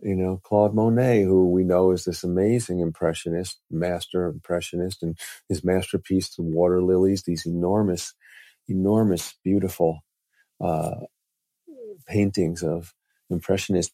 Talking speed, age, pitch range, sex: 115 wpm, 50-69, 85-105 Hz, male